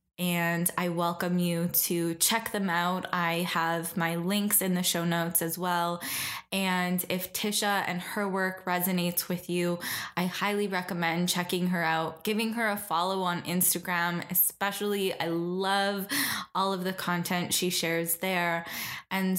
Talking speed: 155 wpm